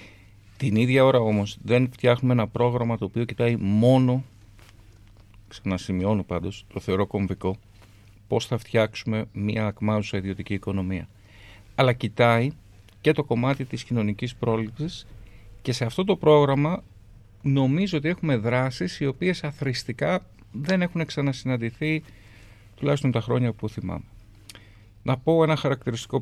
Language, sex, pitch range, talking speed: Greek, male, 105-135 Hz, 130 wpm